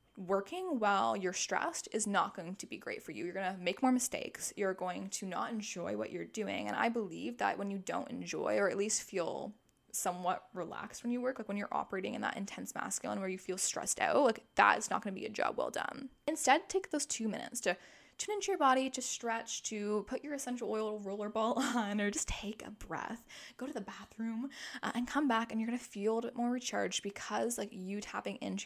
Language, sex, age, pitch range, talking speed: English, female, 10-29, 200-275 Hz, 235 wpm